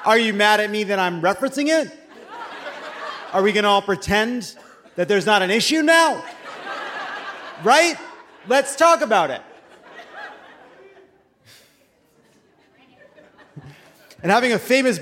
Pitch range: 155-235 Hz